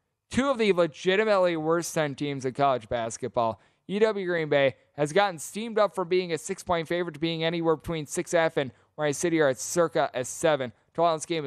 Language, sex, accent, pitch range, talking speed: English, male, American, 145-200 Hz, 190 wpm